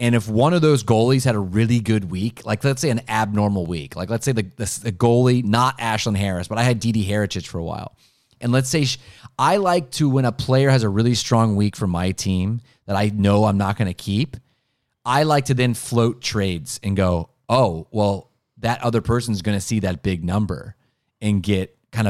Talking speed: 230 wpm